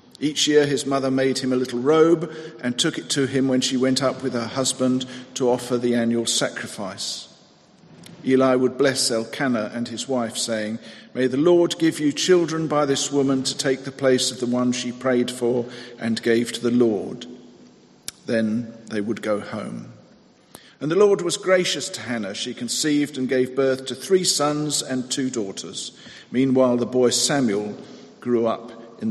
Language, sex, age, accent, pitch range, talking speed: English, male, 50-69, British, 120-150 Hz, 180 wpm